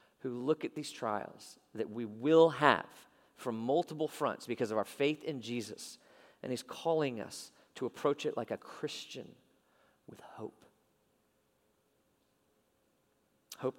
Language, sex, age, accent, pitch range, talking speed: English, male, 40-59, American, 105-130 Hz, 135 wpm